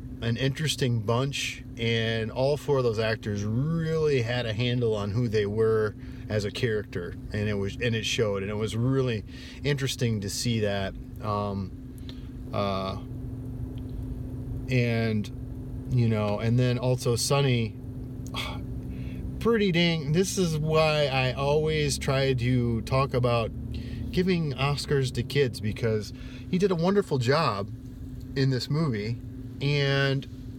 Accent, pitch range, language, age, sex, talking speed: American, 125-140 Hz, English, 40-59, male, 135 wpm